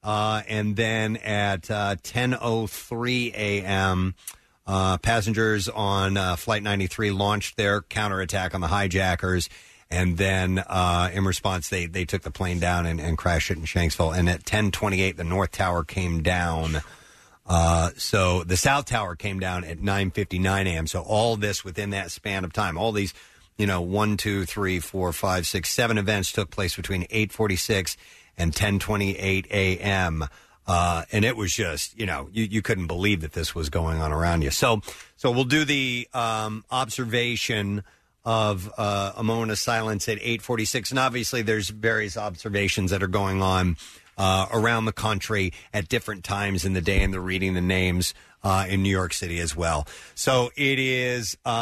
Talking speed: 180 wpm